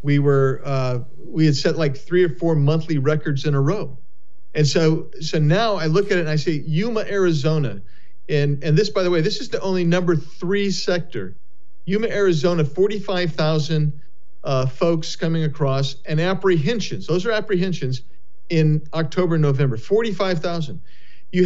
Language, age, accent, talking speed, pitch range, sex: English, 50-69, American, 175 wpm, 145-180 Hz, male